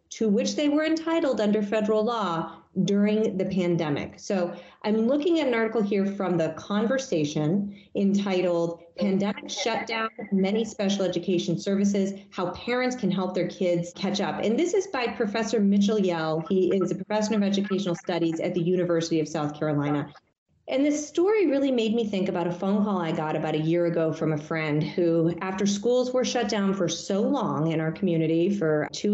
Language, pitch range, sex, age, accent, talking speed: English, 175-220 Hz, female, 30-49, American, 185 wpm